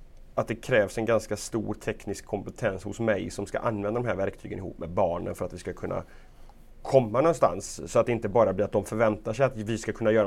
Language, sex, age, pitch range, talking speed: Swedish, male, 30-49, 105-135 Hz, 240 wpm